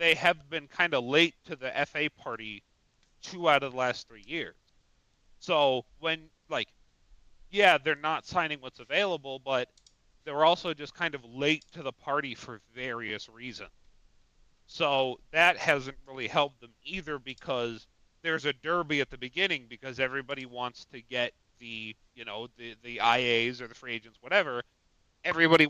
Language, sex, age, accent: English, male, 30-49, American